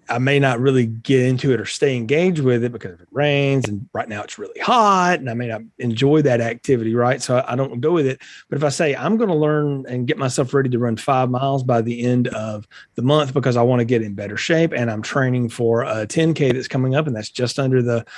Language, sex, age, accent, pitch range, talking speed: English, male, 40-59, American, 120-150 Hz, 265 wpm